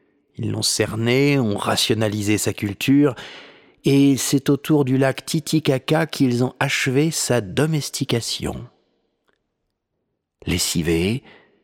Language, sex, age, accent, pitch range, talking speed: French, male, 50-69, French, 105-155 Hz, 100 wpm